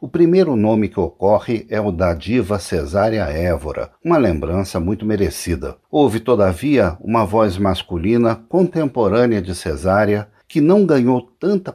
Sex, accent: male, Brazilian